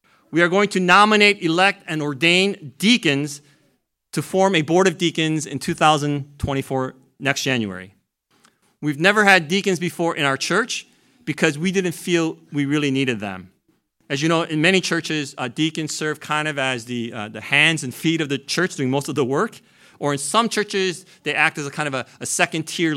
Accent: American